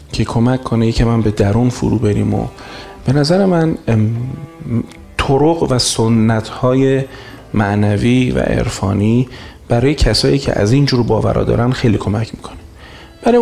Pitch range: 110-150 Hz